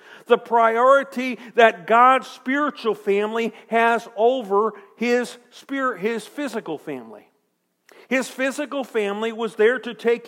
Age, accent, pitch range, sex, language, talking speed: 50-69, American, 200-245 Hz, male, English, 115 wpm